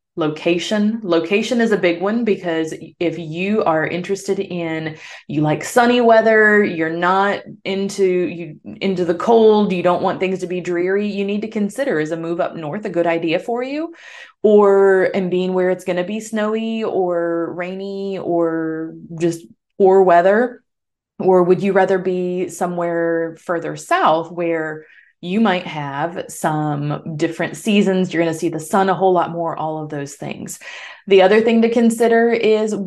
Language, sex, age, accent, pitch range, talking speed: English, female, 20-39, American, 165-205 Hz, 170 wpm